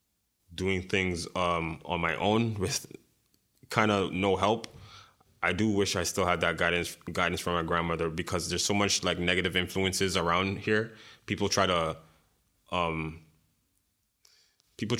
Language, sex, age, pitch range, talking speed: English, male, 20-39, 90-105 Hz, 150 wpm